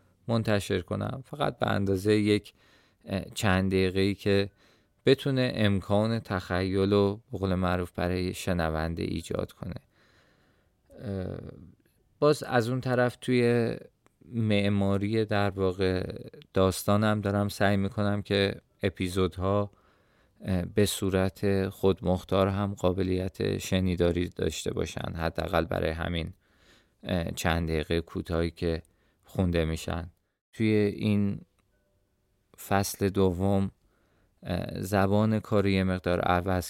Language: Persian